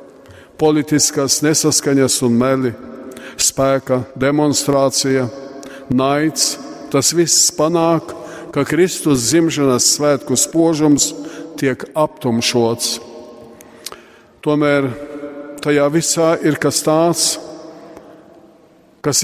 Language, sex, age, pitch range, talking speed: English, male, 50-69, 125-155 Hz, 75 wpm